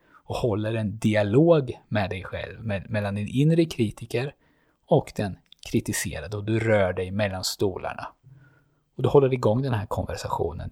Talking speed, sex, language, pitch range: 150 wpm, male, Swedish, 100-130 Hz